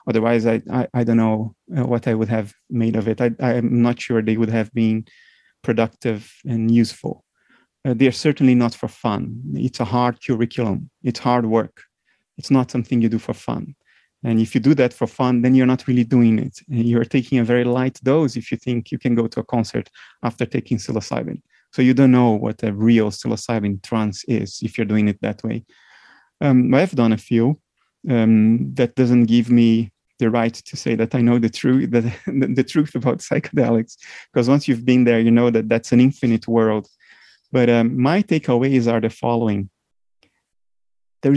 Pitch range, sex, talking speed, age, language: 115-140 Hz, male, 195 wpm, 30-49, English